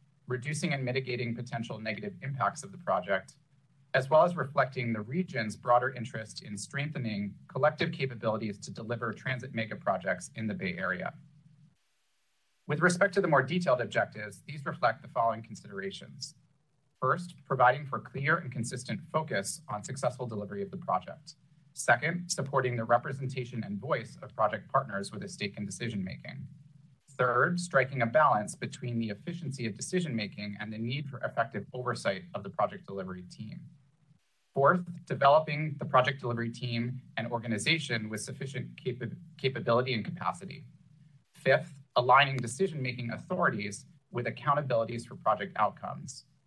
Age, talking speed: 30-49, 145 wpm